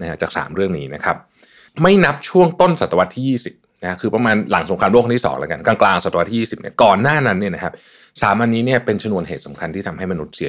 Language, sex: Thai, male